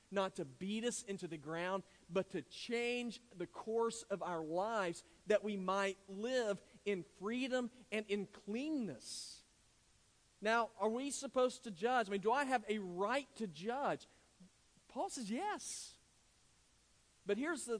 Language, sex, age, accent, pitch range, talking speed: English, male, 40-59, American, 185-225 Hz, 150 wpm